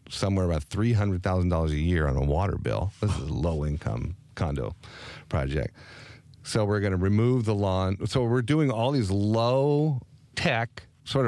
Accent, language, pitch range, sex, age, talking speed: American, English, 95-125 Hz, male, 40-59, 155 wpm